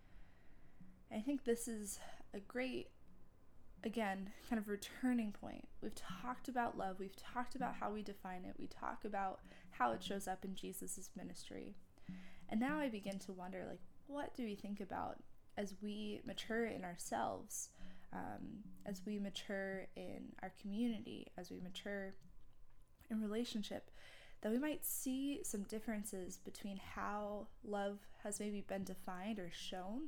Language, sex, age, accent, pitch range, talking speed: English, female, 20-39, American, 195-235 Hz, 150 wpm